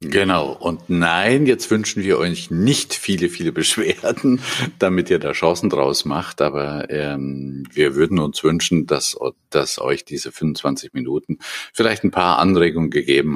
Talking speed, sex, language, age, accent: 155 wpm, male, German, 50-69, German